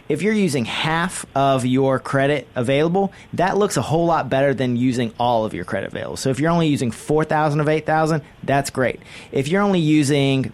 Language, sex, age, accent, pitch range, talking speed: English, male, 30-49, American, 120-170 Hz, 210 wpm